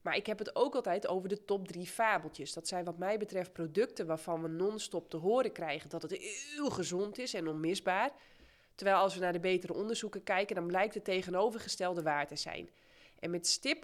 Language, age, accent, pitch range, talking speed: Dutch, 20-39, Dutch, 165-215 Hz, 210 wpm